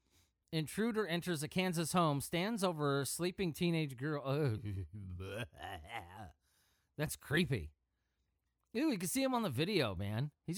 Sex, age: male, 30-49